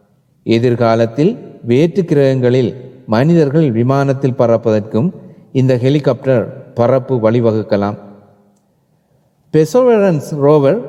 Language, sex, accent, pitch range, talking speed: Tamil, male, native, 115-160 Hz, 60 wpm